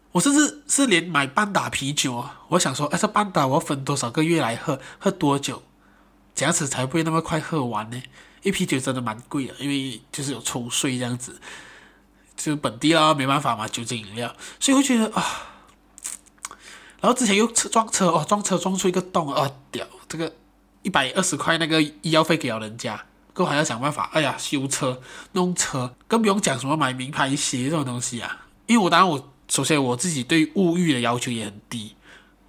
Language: Chinese